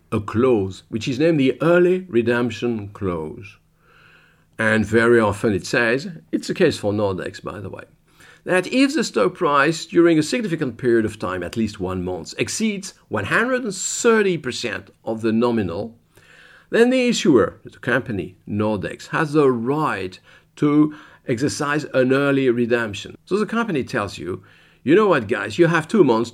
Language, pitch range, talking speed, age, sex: English, 105-160 Hz, 155 wpm, 50-69, male